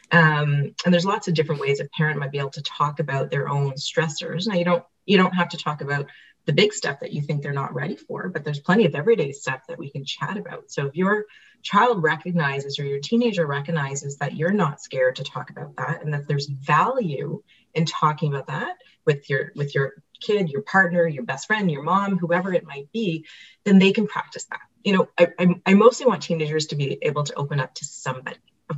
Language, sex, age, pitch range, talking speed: English, female, 30-49, 145-185 Hz, 230 wpm